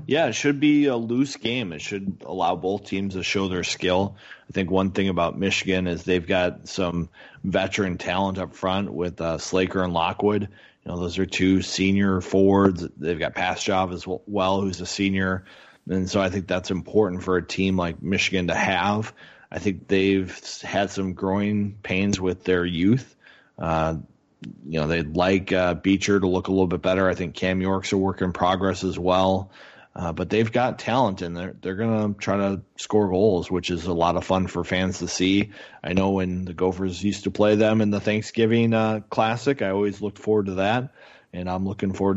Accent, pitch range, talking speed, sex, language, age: American, 90-100 Hz, 205 wpm, male, English, 30-49